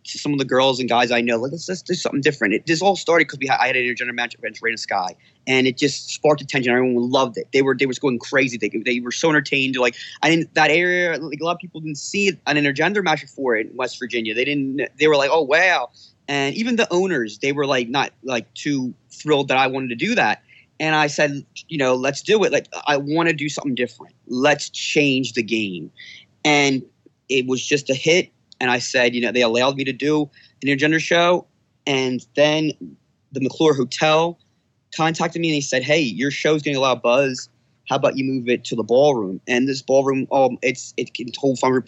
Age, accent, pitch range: 20-39, American, 130-160 Hz